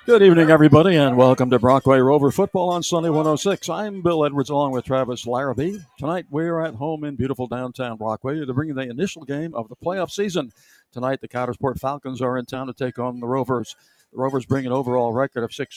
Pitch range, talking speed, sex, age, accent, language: 125-150 Hz, 215 wpm, male, 60-79, American, English